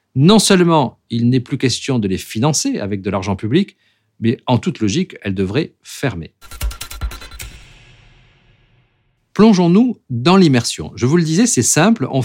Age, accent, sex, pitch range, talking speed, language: 50-69, French, male, 105-155 Hz, 145 wpm, French